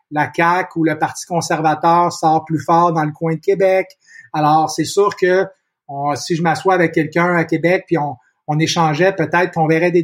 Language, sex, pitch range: French, male, 155-180 Hz